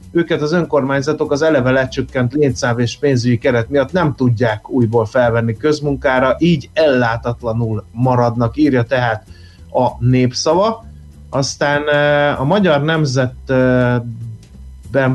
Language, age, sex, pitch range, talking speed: Hungarian, 30-49, male, 120-145 Hz, 105 wpm